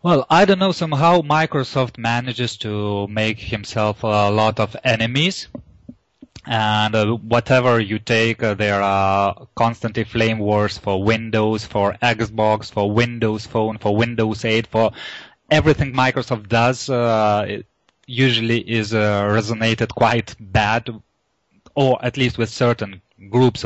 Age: 20-39